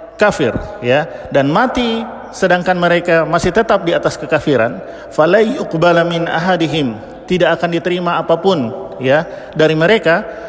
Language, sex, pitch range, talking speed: Indonesian, male, 160-210 Hz, 115 wpm